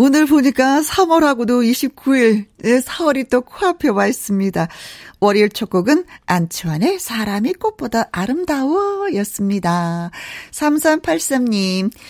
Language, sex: Korean, female